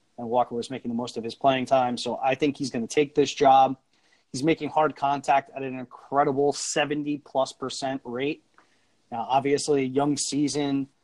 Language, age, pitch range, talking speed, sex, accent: English, 30-49, 125-145 Hz, 180 wpm, male, American